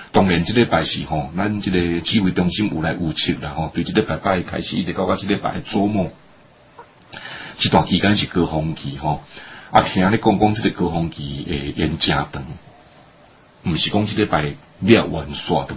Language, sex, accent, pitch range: Chinese, male, Malaysian, 80-105 Hz